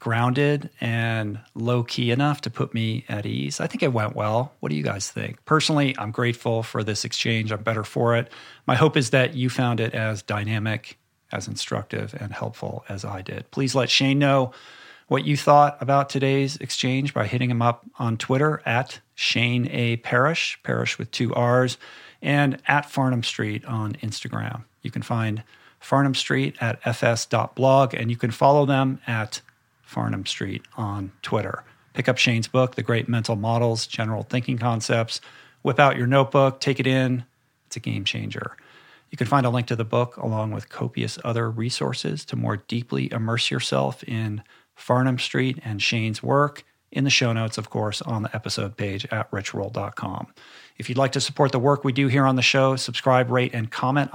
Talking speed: 185 wpm